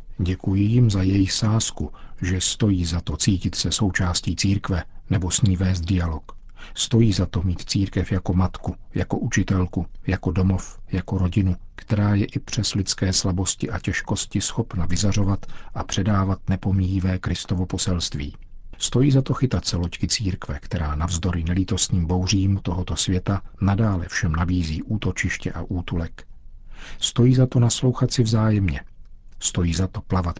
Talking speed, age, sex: 150 wpm, 50-69, male